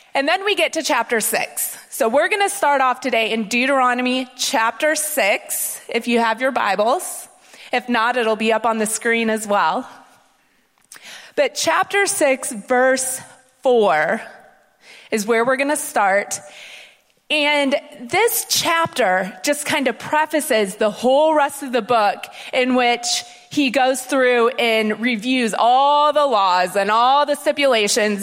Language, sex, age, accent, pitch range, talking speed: English, female, 30-49, American, 230-300 Hz, 150 wpm